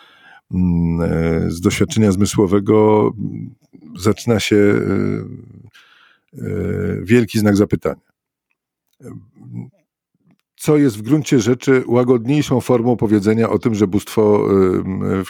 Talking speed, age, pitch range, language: 80 wpm, 50-69, 95-125 Hz, Polish